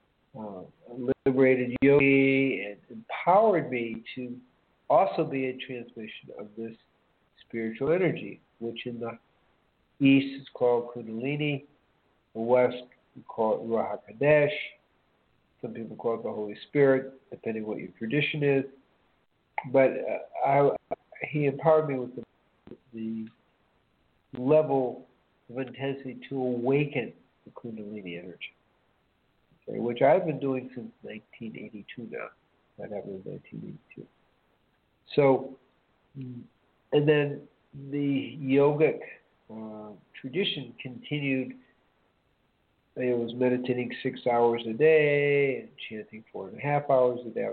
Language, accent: English, American